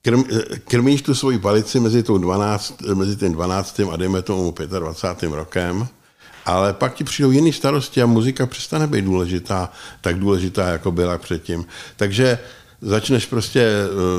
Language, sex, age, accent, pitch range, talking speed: Czech, male, 60-79, native, 90-115 Hz, 135 wpm